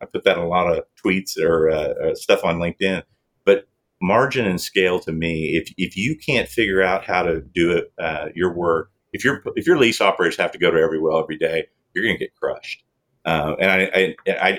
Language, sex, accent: English, male, American